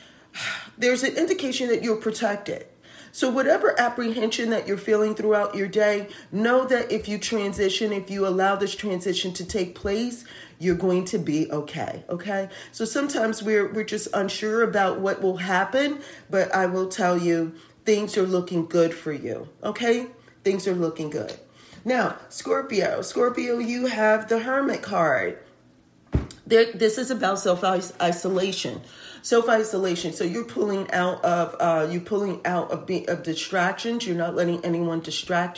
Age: 40-59